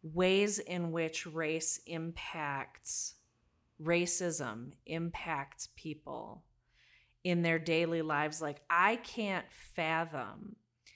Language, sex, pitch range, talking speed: English, female, 150-175 Hz, 90 wpm